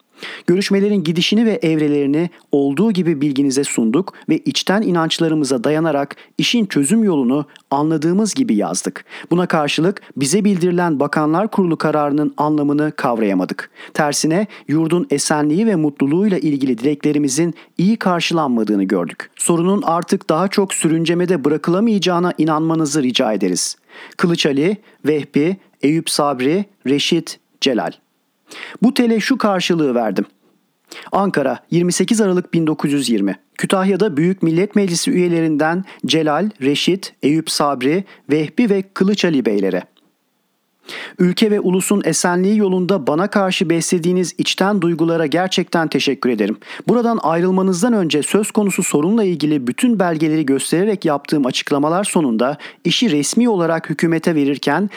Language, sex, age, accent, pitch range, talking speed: Turkish, male, 40-59, native, 150-190 Hz, 115 wpm